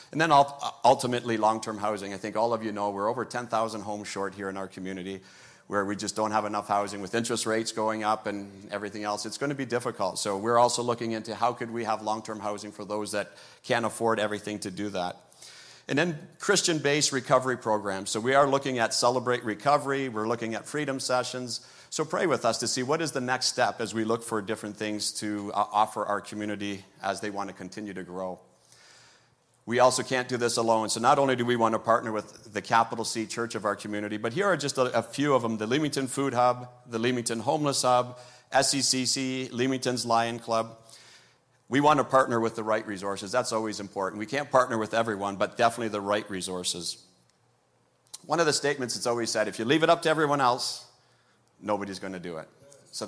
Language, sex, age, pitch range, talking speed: English, male, 40-59, 105-125 Hz, 215 wpm